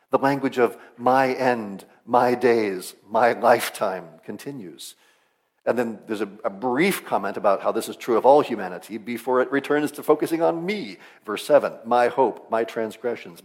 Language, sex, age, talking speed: English, male, 50-69, 170 wpm